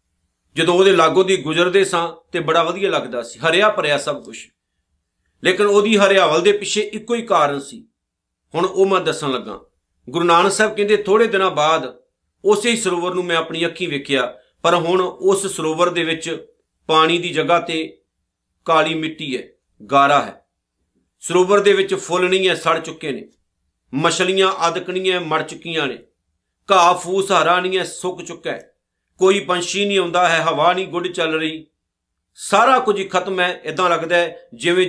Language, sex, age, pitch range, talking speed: Punjabi, male, 50-69, 160-195 Hz, 170 wpm